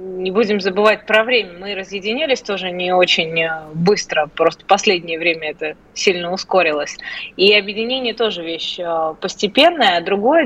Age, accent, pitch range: 20-39, native, 185-235 Hz